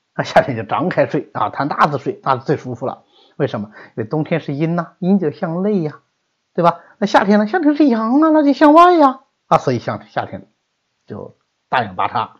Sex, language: male, Chinese